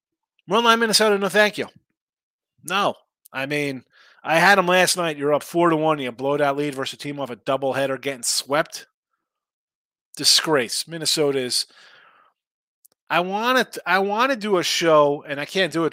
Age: 30-49